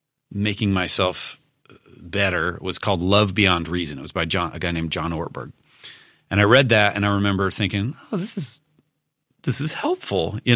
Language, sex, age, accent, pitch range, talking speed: English, male, 30-49, American, 90-120 Hz, 180 wpm